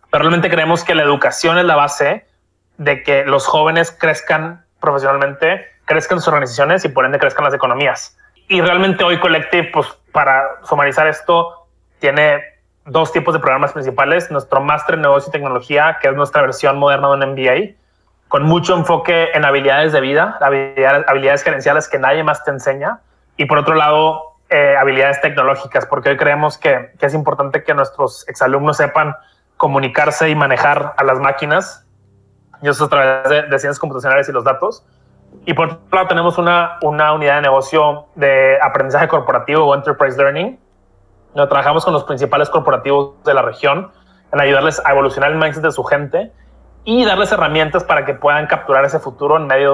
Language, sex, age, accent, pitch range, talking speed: Spanish, male, 20-39, Mexican, 140-160 Hz, 175 wpm